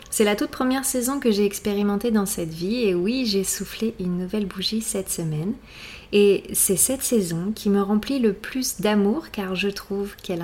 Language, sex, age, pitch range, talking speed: French, female, 30-49, 185-225 Hz, 195 wpm